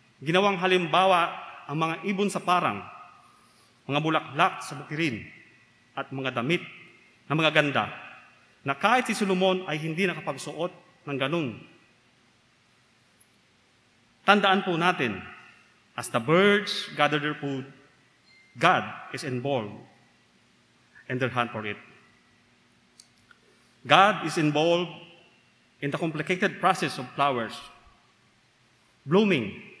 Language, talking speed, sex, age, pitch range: Filipino, 110 wpm, male, 30-49, 125-180 Hz